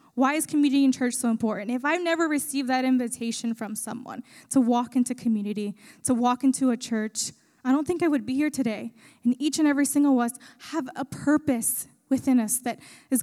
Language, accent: English, American